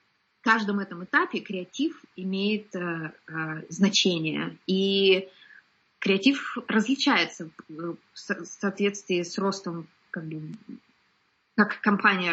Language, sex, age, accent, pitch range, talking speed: Russian, female, 20-39, native, 185-215 Hz, 100 wpm